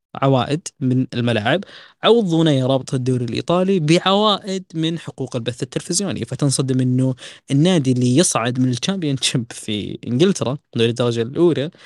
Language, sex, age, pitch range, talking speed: Arabic, female, 20-39, 135-210 Hz, 115 wpm